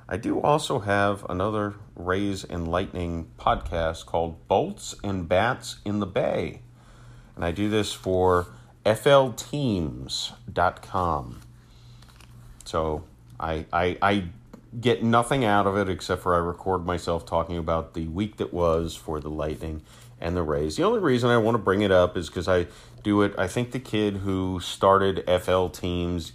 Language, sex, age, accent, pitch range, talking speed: English, male, 30-49, American, 90-120 Hz, 160 wpm